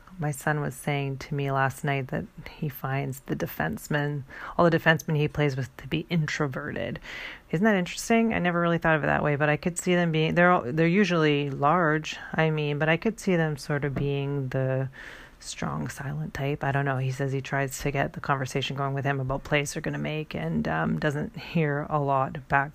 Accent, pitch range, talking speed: American, 140-165 Hz, 225 wpm